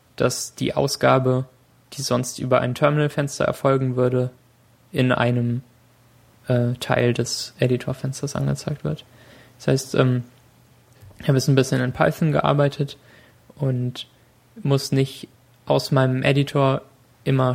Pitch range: 125-140 Hz